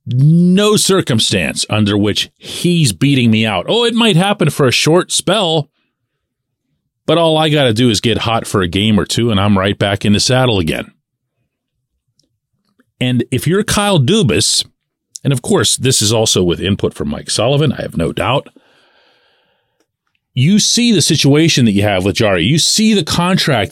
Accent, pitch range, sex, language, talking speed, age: American, 120-170 Hz, male, English, 180 wpm, 40-59